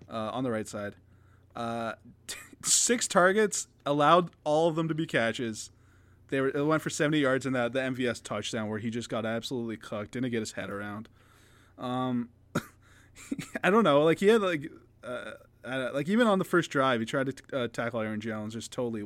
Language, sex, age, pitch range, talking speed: English, male, 20-39, 110-155 Hz, 205 wpm